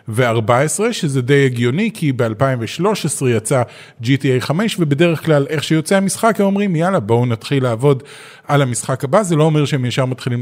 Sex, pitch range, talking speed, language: male, 130-180 Hz, 165 wpm, Hebrew